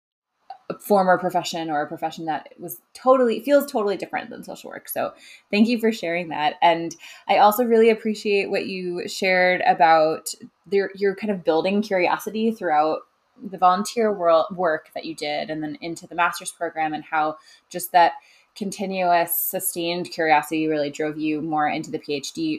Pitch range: 170-220 Hz